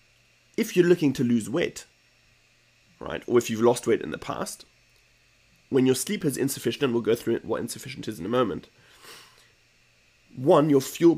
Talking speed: 175 wpm